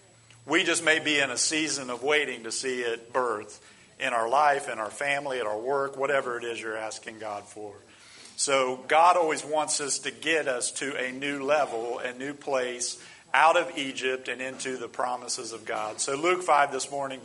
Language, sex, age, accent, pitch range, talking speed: English, male, 40-59, American, 135-170 Hz, 200 wpm